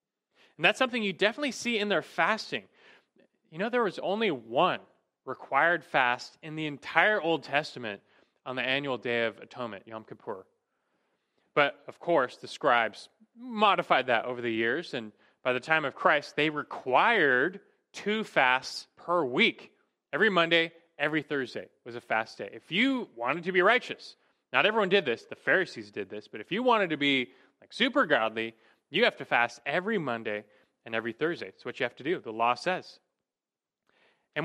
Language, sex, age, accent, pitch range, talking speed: English, male, 20-39, American, 125-185 Hz, 180 wpm